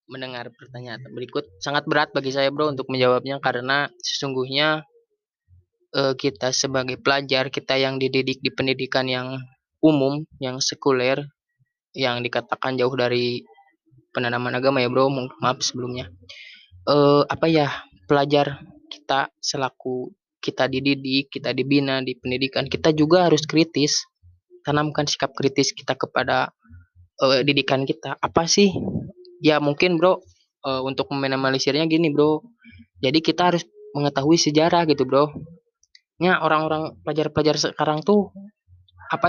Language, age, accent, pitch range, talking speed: Indonesian, 20-39, native, 130-155 Hz, 120 wpm